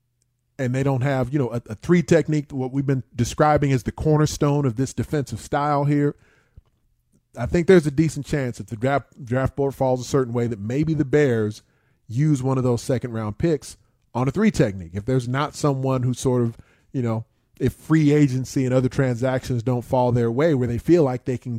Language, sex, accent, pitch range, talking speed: English, male, American, 120-140 Hz, 210 wpm